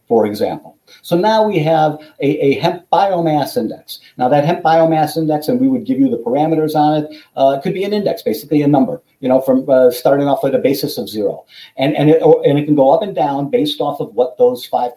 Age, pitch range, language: 50-69, 140-180 Hz, English